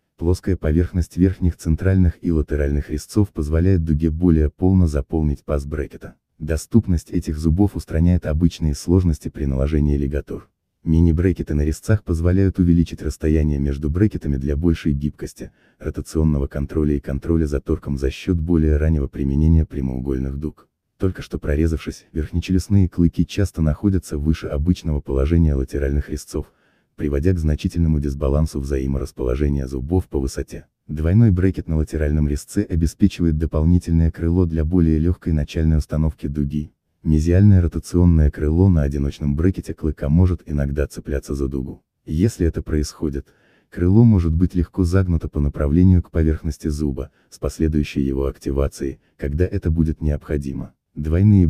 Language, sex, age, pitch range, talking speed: Russian, male, 30-49, 75-85 Hz, 135 wpm